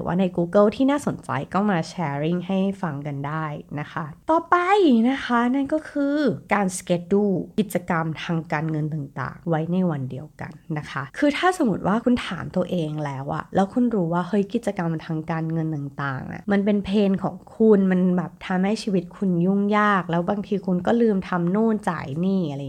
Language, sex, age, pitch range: Thai, female, 20-39, 155-205 Hz